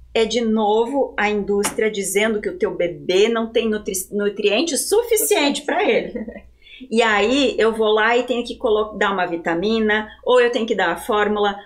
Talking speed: 185 wpm